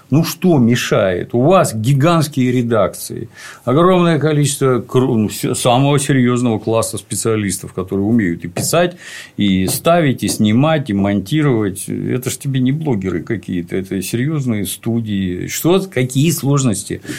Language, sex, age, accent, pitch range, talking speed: Russian, male, 50-69, native, 105-140 Hz, 120 wpm